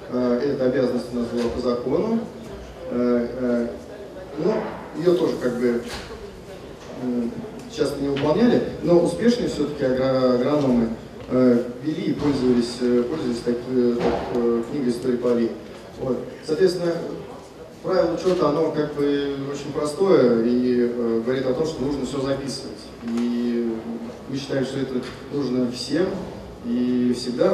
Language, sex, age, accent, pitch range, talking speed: Russian, male, 30-49, native, 125-155 Hz, 120 wpm